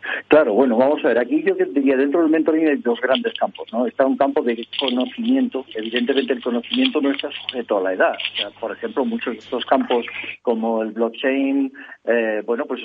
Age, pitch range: 50-69, 120-155 Hz